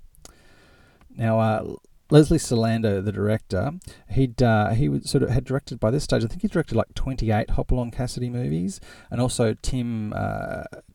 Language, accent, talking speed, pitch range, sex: English, Australian, 165 wpm, 95-110 Hz, male